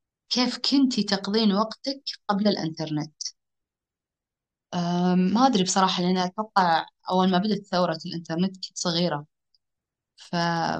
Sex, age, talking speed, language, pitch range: female, 20-39, 105 wpm, Arabic, 170-210 Hz